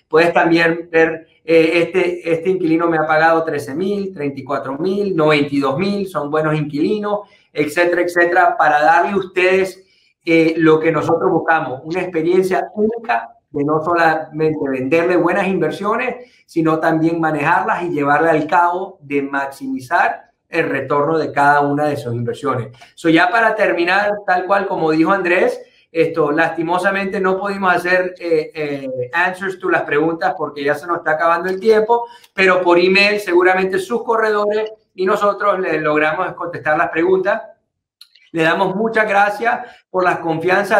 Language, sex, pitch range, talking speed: English, male, 160-195 Hz, 155 wpm